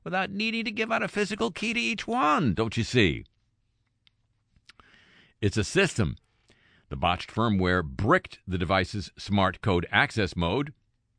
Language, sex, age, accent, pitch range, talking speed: English, male, 50-69, American, 85-115 Hz, 145 wpm